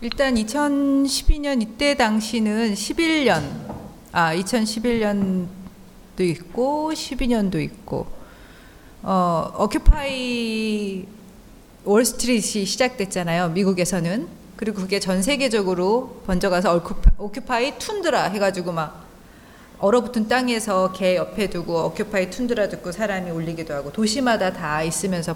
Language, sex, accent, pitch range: Korean, female, native, 185-250 Hz